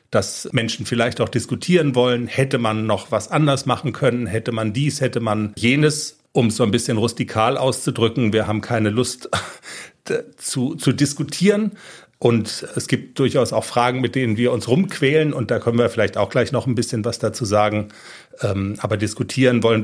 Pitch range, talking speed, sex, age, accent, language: 115-140 Hz, 180 wpm, male, 40-59, German, German